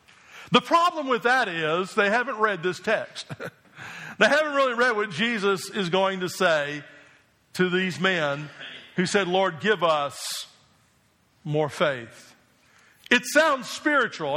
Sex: male